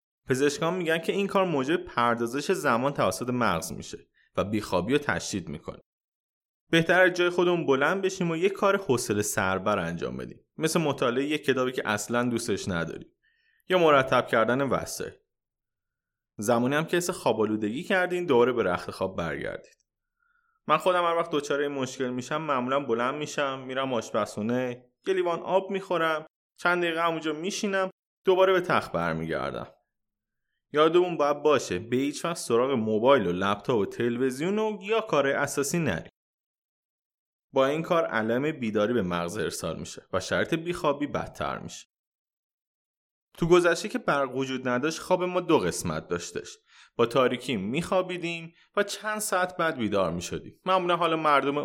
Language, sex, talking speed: Persian, male, 150 wpm